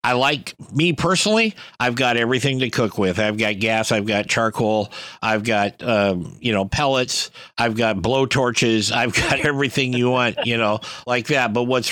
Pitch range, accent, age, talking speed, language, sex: 110-135 Hz, American, 50-69, 185 wpm, English, male